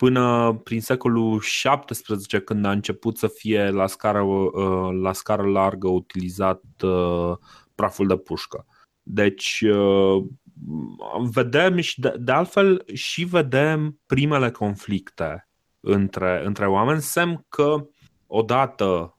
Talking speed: 105 wpm